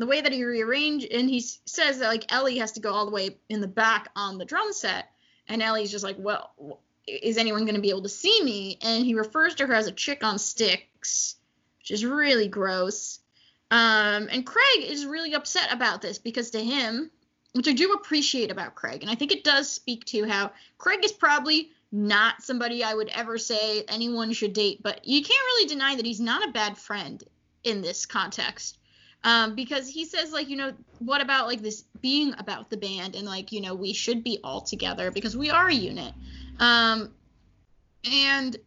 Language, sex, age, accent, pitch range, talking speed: English, female, 10-29, American, 210-260 Hz, 210 wpm